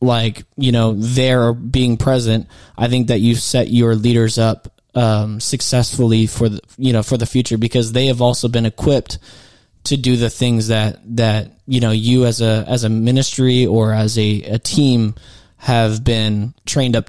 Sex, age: male, 20-39